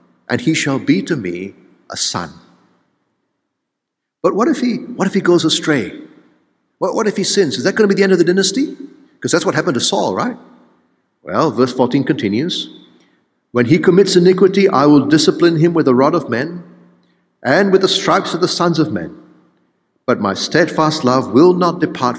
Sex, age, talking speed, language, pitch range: male, 60-79, 190 wpm, English, 140-225 Hz